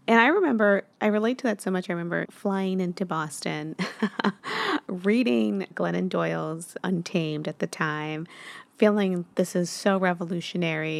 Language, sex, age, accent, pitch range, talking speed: English, female, 30-49, American, 165-215 Hz, 140 wpm